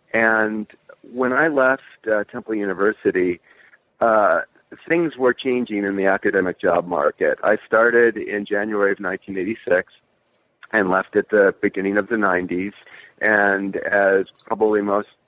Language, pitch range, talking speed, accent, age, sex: English, 95-120 Hz, 135 wpm, American, 50-69, male